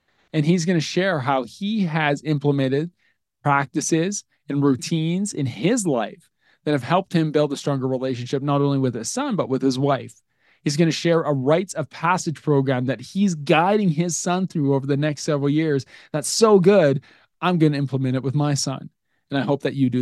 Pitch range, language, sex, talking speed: 135-165 Hz, English, male, 205 wpm